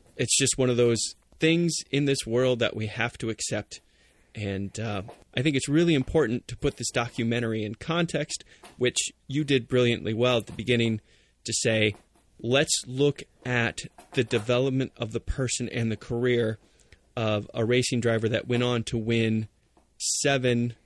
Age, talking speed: 30-49, 165 wpm